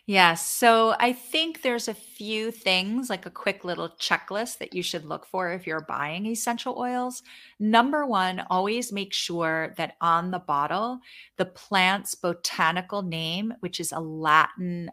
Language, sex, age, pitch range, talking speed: English, female, 30-49, 165-215 Hz, 160 wpm